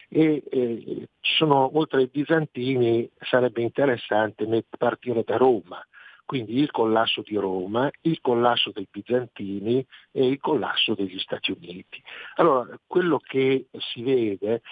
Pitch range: 110-135 Hz